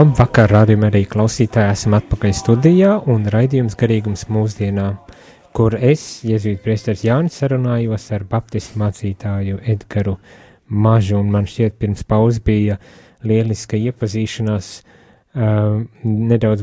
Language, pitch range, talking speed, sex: English, 105-130 Hz, 110 wpm, male